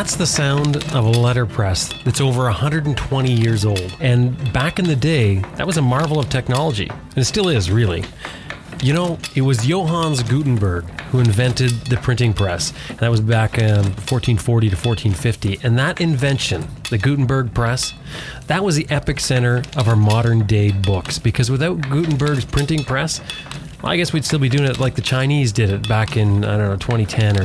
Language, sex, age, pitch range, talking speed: English, male, 30-49, 110-145 Hz, 190 wpm